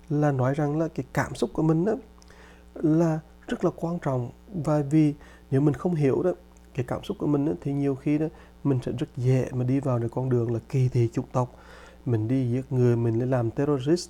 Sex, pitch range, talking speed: male, 125-155 Hz, 235 wpm